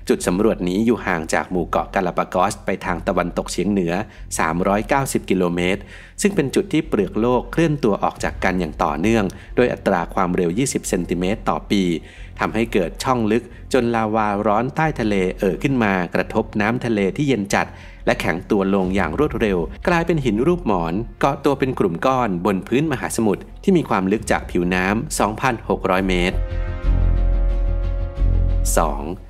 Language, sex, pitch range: Thai, male, 90-120 Hz